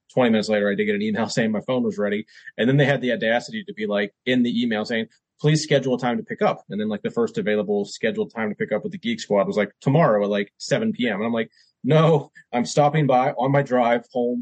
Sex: male